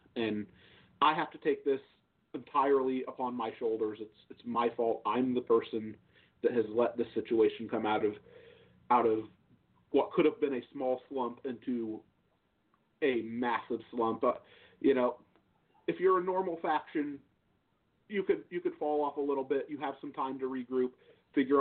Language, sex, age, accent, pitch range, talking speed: English, male, 40-59, American, 115-145 Hz, 170 wpm